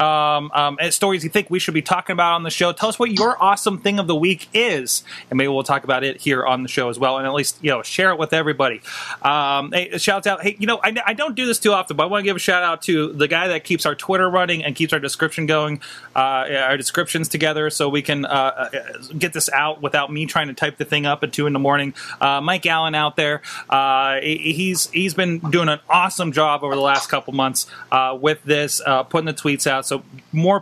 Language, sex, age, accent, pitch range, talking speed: English, male, 30-49, American, 140-185 Hz, 260 wpm